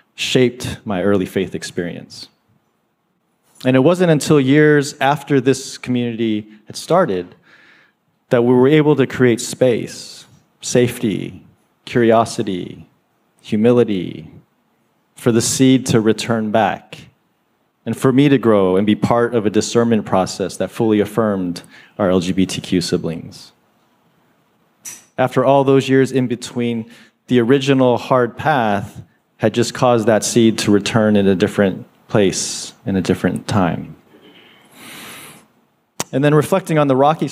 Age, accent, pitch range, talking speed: 40-59, American, 105-125 Hz, 130 wpm